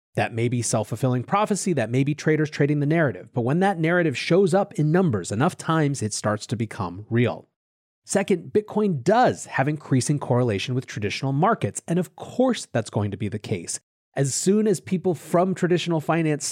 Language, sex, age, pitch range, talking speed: English, male, 30-49, 125-180 Hz, 190 wpm